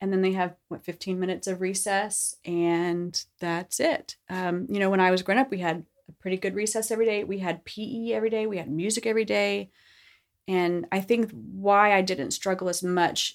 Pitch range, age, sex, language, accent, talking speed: 170-210 Hz, 30-49, female, English, American, 210 wpm